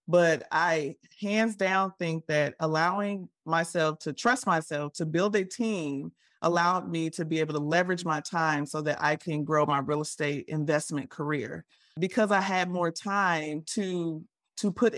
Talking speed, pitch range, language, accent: 170 wpm, 160-205 Hz, English, American